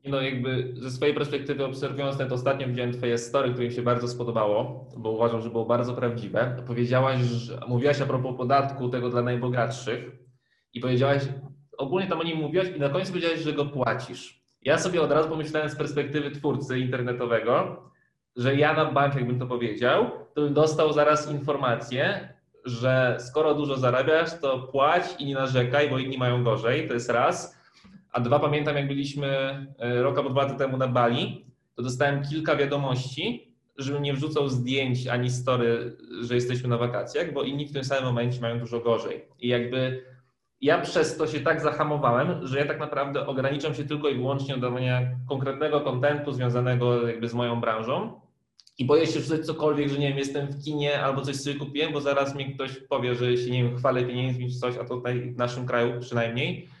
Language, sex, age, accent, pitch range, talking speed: Polish, male, 20-39, native, 125-145 Hz, 185 wpm